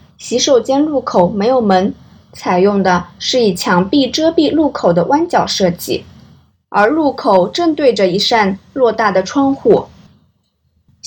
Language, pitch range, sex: Chinese, 195-275 Hz, female